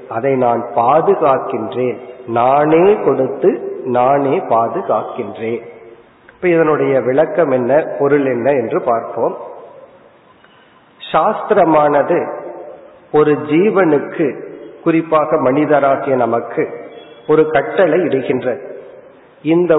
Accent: native